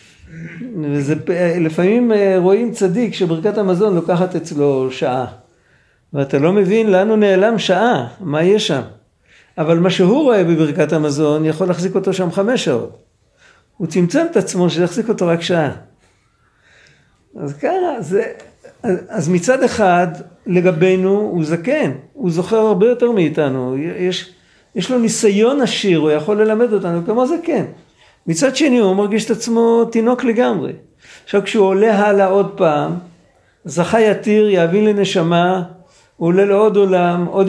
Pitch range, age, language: 165-215 Hz, 50-69, Hebrew